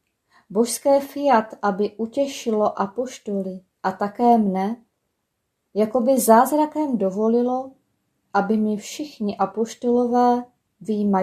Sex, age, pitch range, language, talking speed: female, 20-39, 205-255 Hz, Czech, 90 wpm